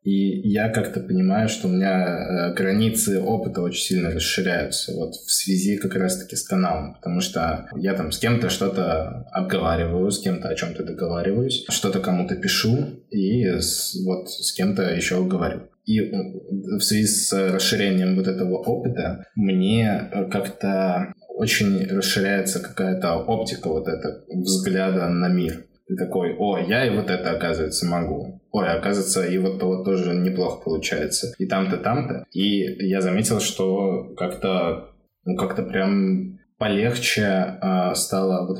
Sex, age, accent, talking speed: male, 20-39, native, 145 wpm